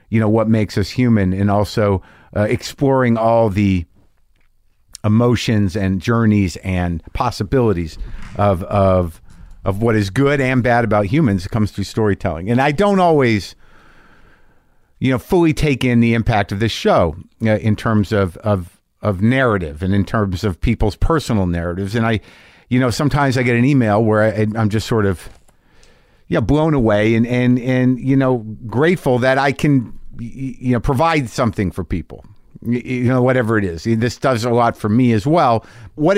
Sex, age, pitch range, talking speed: male, 50-69, 100-125 Hz, 180 wpm